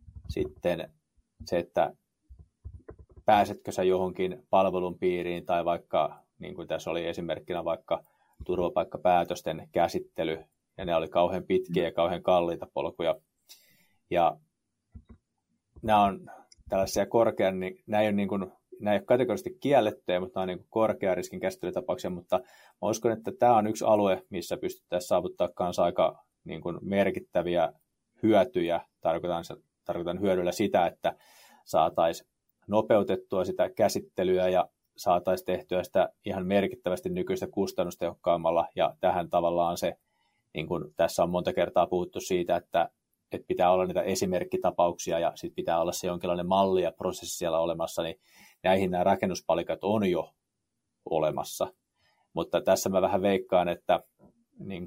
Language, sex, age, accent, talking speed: Finnish, male, 30-49, native, 140 wpm